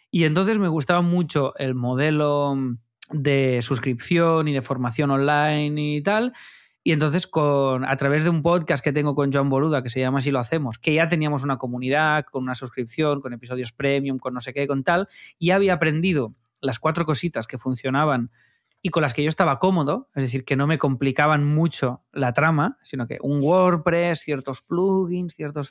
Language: Spanish